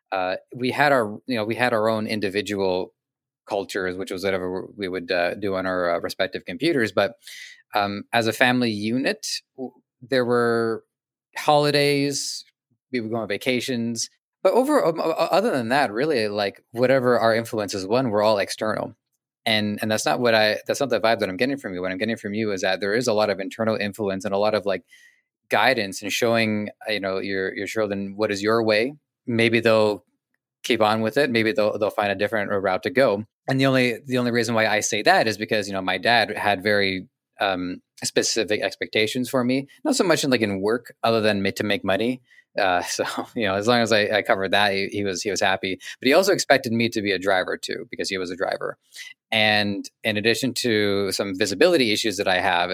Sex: male